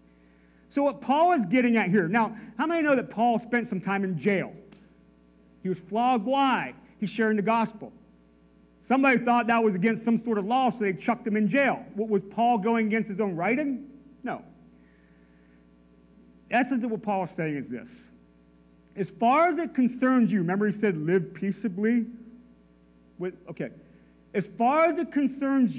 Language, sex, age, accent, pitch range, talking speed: English, male, 40-59, American, 165-235 Hz, 180 wpm